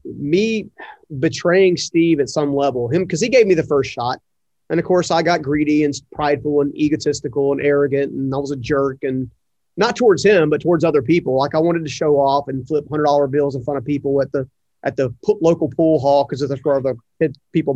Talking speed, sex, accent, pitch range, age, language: 220 wpm, male, American, 135-165 Hz, 30-49, English